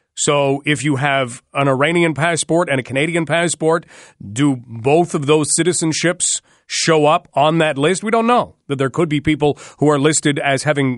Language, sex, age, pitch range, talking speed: English, male, 40-59, 135-165 Hz, 185 wpm